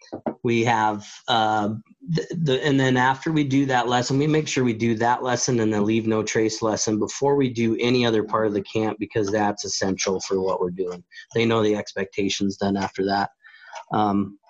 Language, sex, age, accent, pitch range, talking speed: English, male, 30-49, American, 105-125 Hz, 205 wpm